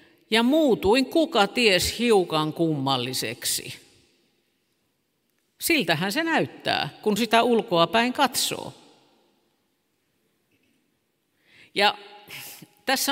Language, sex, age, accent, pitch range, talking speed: Finnish, female, 50-69, native, 165-250 Hz, 75 wpm